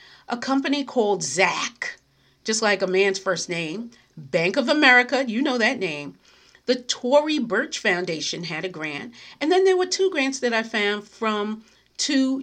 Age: 40-59